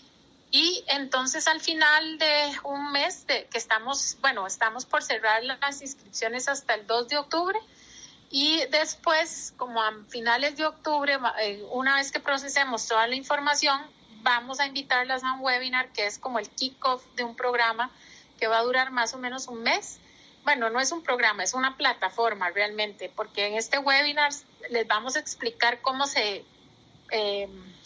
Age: 30-49